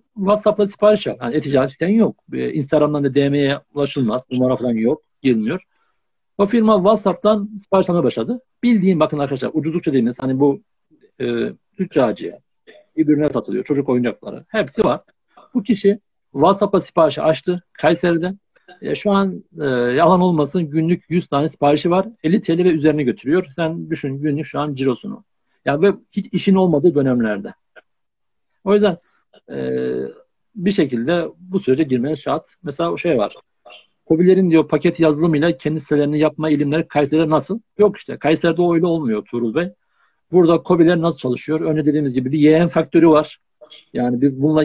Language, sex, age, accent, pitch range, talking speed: Turkish, male, 60-79, native, 140-185 Hz, 155 wpm